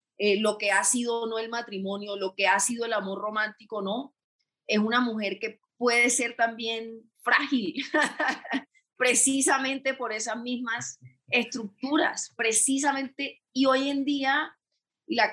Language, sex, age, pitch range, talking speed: Spanish, female, 30-49, 205-250 Hz, 140 wpm